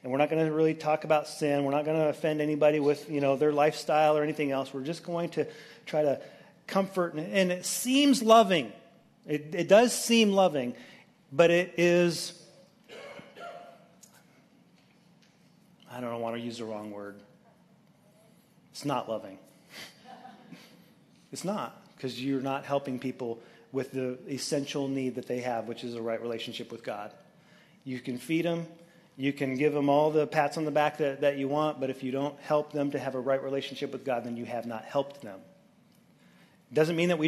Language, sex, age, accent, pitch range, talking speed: English, male, 40-59, American, 135-170 Hz, 185 wpm